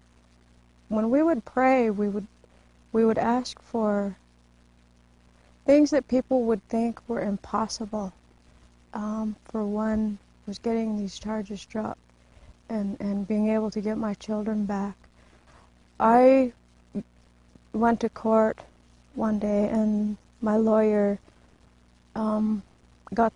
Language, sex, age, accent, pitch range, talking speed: English, female, 40-59, American, 190-220 Hz, 115 wpm